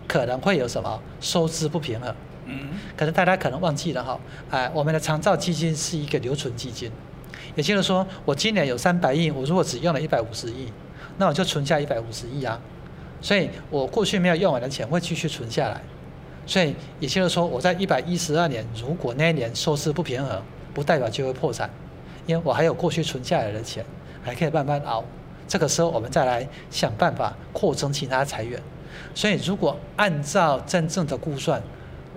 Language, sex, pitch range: Chinese, male, 130-165 Hz